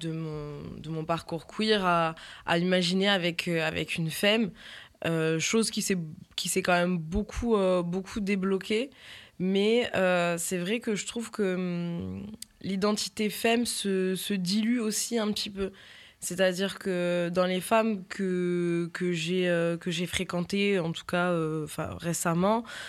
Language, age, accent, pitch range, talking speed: French, 20-39, French, 175-210 Hz, 155 wpm